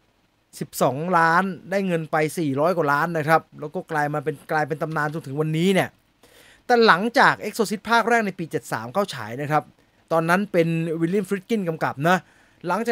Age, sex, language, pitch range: 20-39, male, English, 155-215 Hz